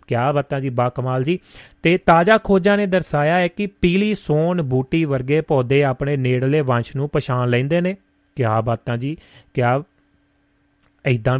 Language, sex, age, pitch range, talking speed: Punjabi, male, 30-49, 135-170 Hz, 165 wpm